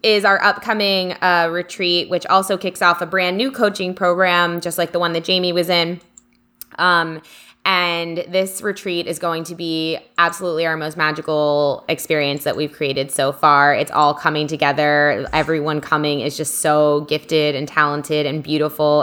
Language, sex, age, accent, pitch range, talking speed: English, female, 20-39, American, 150-175 Hz, 170 wpm